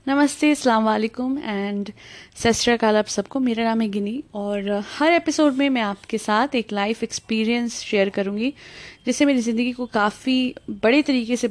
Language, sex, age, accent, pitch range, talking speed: Hindi, female, 20-39, native, 220-280 Hz, 155 wpm